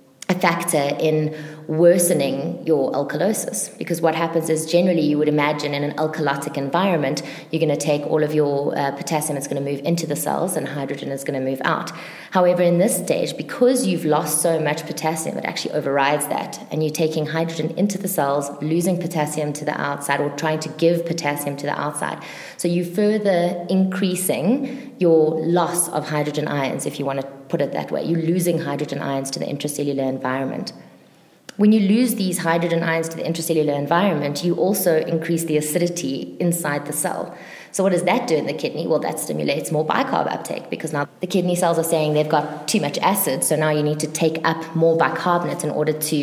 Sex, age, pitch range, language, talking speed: female, 20-39, 150-175 Hz, English, 200 wpm